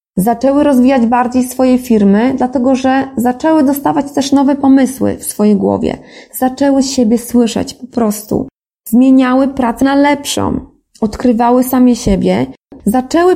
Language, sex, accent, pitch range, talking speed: Polish, female, native, 220-275 Hz, 125 wpm